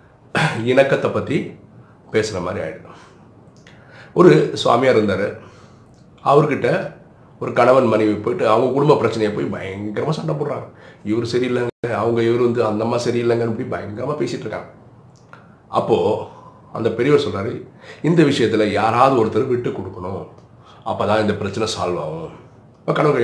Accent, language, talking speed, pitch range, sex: native, Tamil, 120 wpm, 110-140 Hz, male